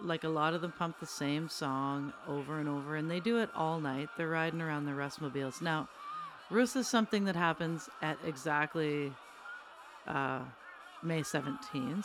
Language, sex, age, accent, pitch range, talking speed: English, female, 40-59, American, 145-175 Hz, 170 wpm